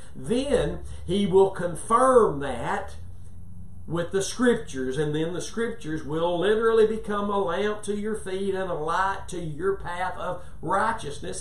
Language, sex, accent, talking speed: English, male, American, 145 wpm